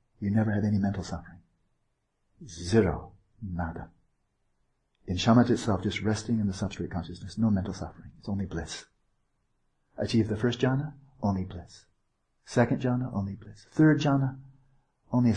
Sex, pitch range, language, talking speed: male, 95-120 Hz, English, 145 wpm